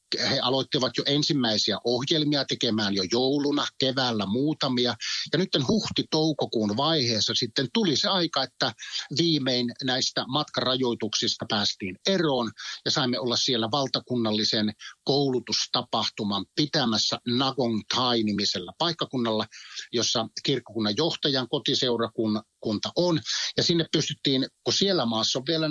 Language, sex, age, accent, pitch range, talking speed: Finnish, male, 60-79, native, 115-150 Hz, 110 wpm